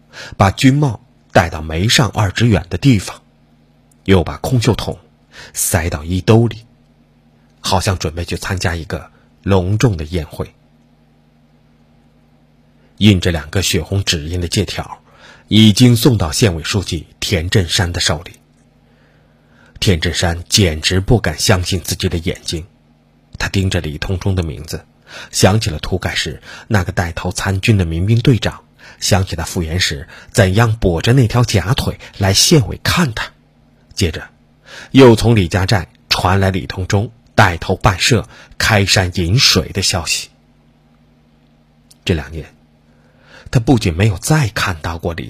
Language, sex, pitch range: Chinese, male, 80-105 Hz